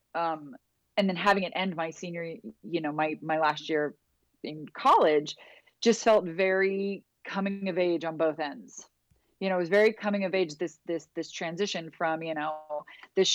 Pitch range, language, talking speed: 170-210 Hz, English, 185 wpm